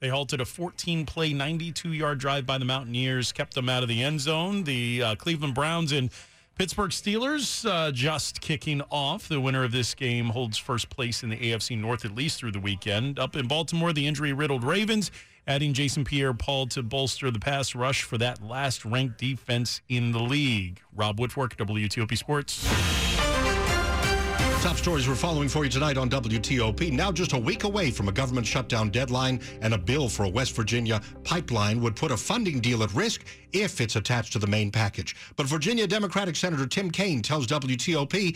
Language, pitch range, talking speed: English, 115-150 Hz, 185 wpm